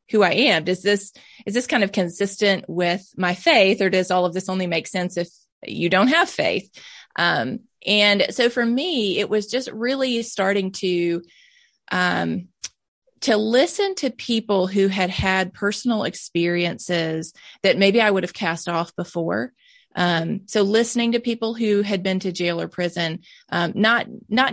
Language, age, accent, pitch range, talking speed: English, 30-49, American, 175-220 Hz, 170 wpm